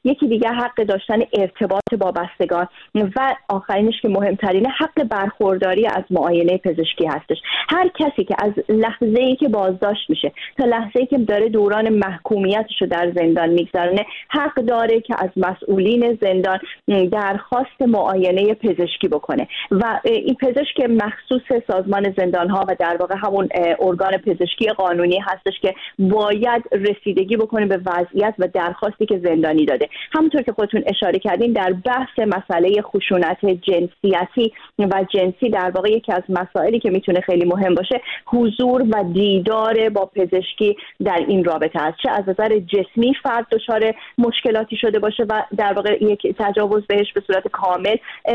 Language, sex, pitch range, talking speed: Persian, female, 190-235 Hz, 150 wpm